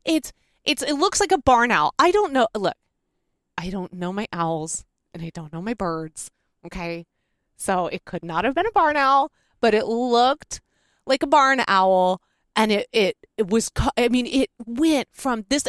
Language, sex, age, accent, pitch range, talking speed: English, female, 30-49, American, 185-250 Hz, 195 wpm